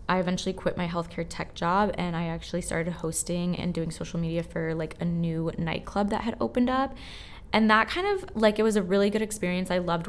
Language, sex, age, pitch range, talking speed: English, female, 20-39, 160-185 Hz, 225 wpm